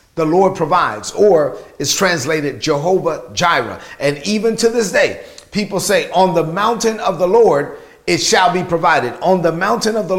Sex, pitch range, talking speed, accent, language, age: male, 165-210 Hz, 175 wpm, American, English, 40-59